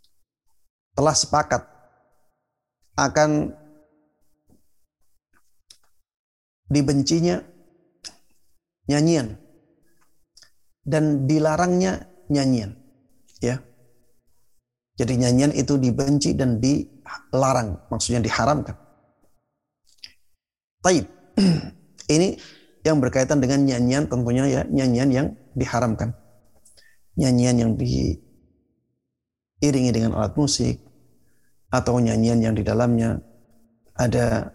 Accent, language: native, Indonesian